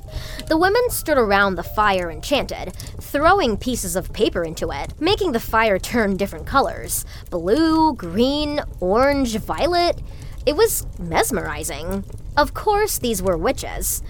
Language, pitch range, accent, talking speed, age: English, 195-320 Hz, American, 135 wpm, 20-39